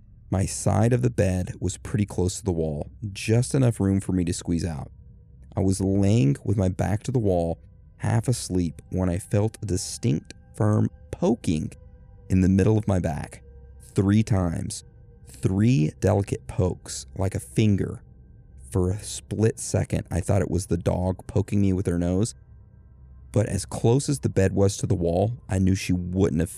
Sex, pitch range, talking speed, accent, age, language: male, 90-105 Hz, 185 wpm, American, 30-49, English